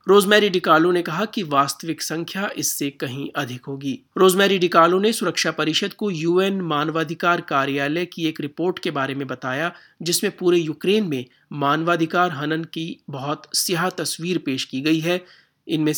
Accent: native